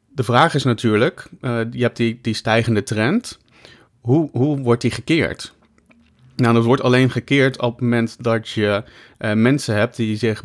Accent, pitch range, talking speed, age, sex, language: Dutch, 105-130 Hz, 180 wpm, 30-49, male, Dutch